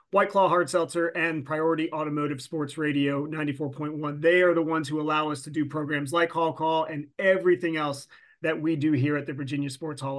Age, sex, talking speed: 30-49, male, 205 wpm